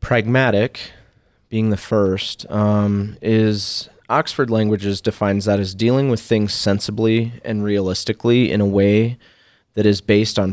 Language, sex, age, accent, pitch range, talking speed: English, male, 30-49, American, 85-105 Hz, 135 wpm